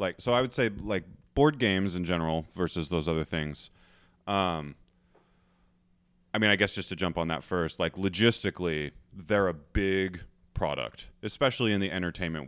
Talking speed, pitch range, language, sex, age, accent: 170 wpm, 85-100 Hz, English, male, 30-49, American